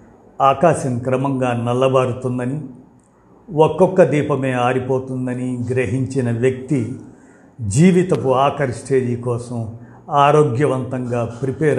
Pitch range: 120-140 Hz